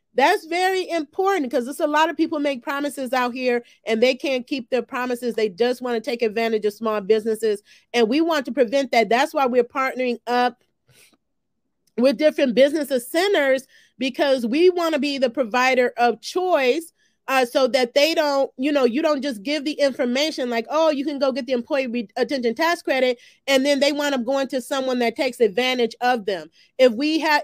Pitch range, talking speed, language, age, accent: 235-285 Hz, 200 wpm, English, 40-59, American